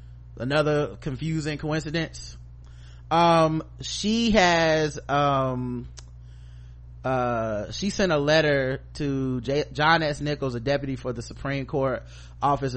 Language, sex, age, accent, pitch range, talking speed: English, male, 20-39, American, 110-140 Hz, 110 wpm